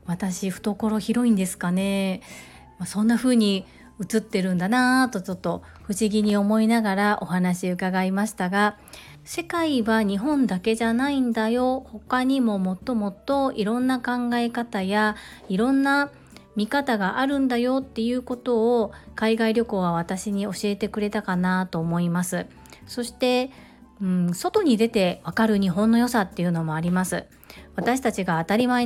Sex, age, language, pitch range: female, 40-59, Japanese, 190-245 Hz